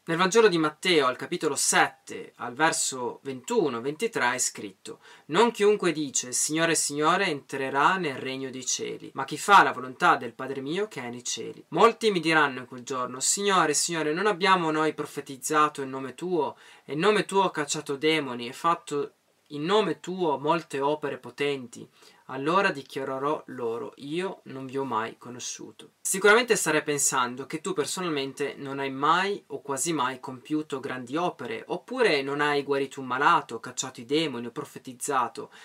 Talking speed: 170 wpm